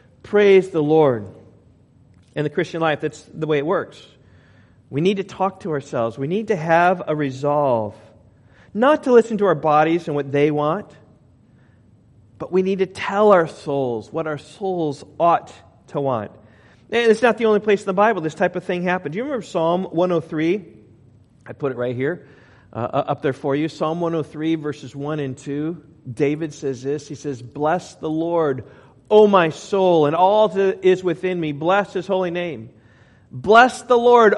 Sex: male